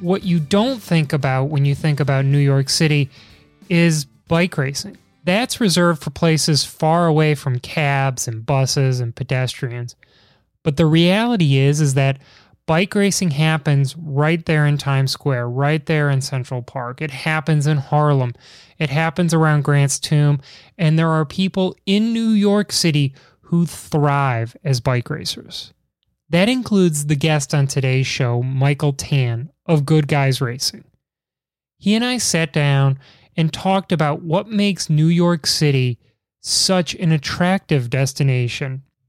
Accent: American